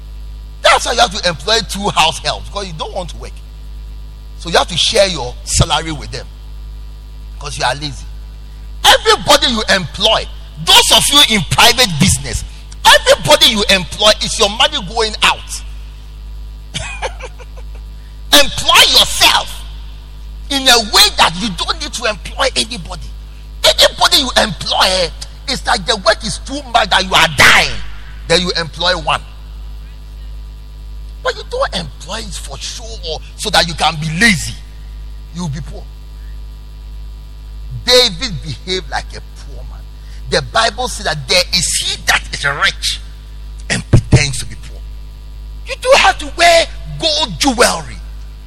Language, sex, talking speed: English, male, 145 wpm